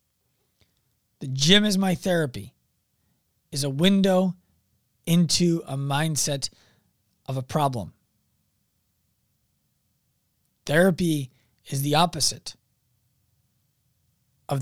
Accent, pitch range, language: American, 130-180 Hz, English